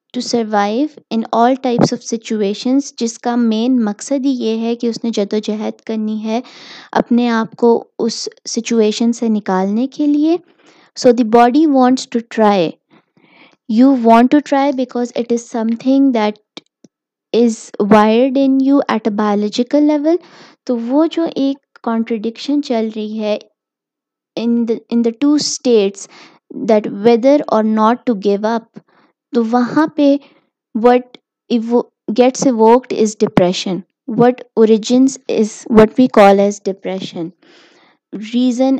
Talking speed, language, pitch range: 140 wpm, Urdu, 220-260 Hz